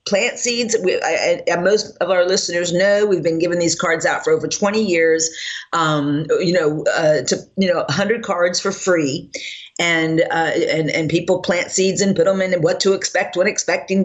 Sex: female